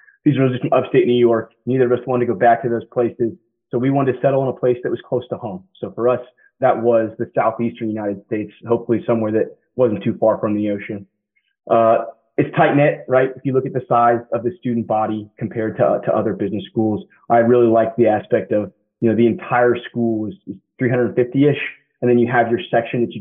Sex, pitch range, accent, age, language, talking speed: male, 110-125 Hz, American, 20-39, English, 240 wpm